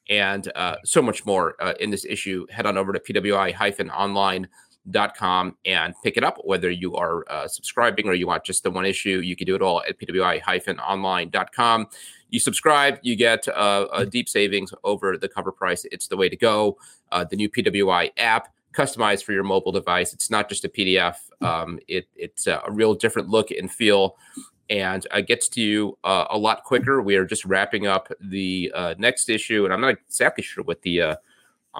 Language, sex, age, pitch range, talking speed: English, male, 30-49, 95-115 Hz, 195 wpm